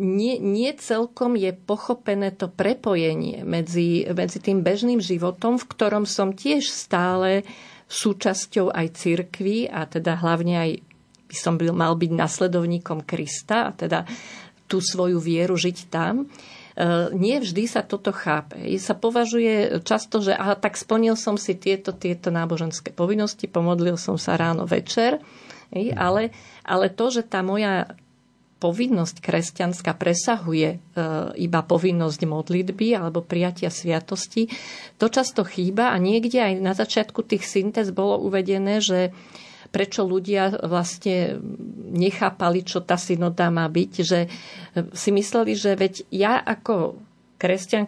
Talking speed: 135 wpm